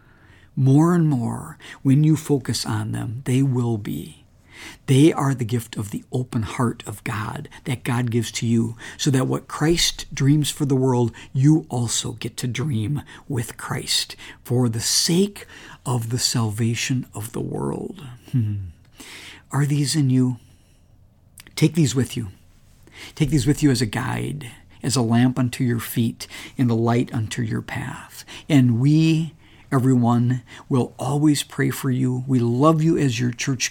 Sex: male